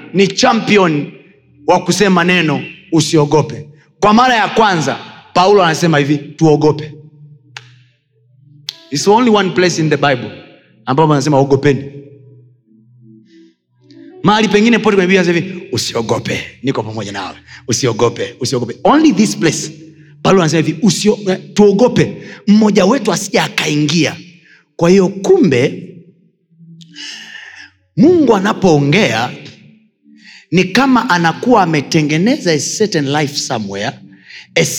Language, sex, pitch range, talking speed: Swahili, male, 150-200 Hz, 100 wpm